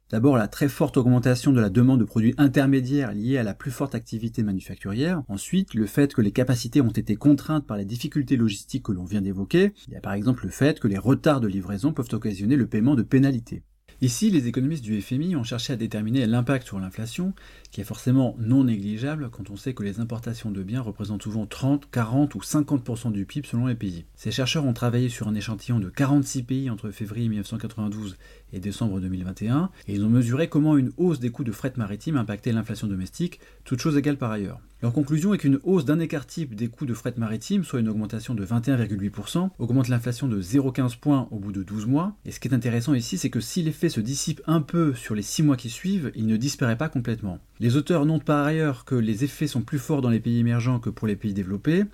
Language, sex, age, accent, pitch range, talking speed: French, male, 30-49, French, 110-145 Hz, 230 wpm